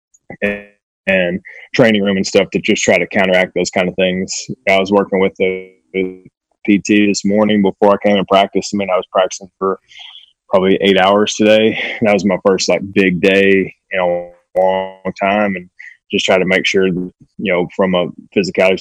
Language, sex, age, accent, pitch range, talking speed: English, male, 20-39, American, 95-105 Hz, 195 wpm